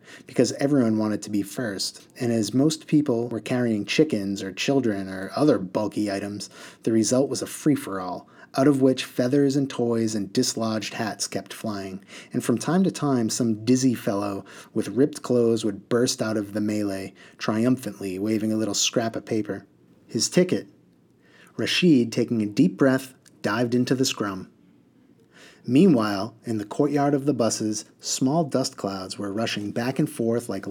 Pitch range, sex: 105-135 Hz, male